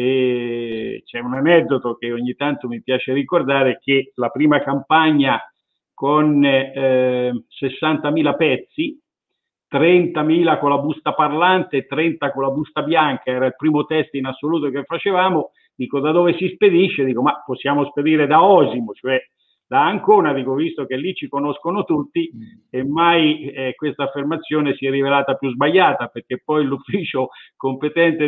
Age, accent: 50-69, native